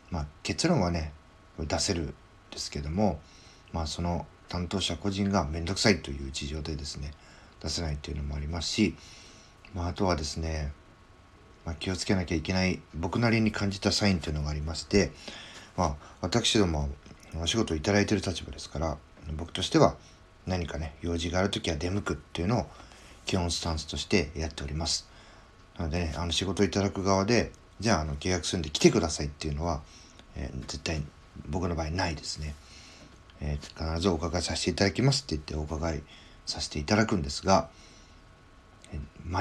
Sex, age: male, 40-59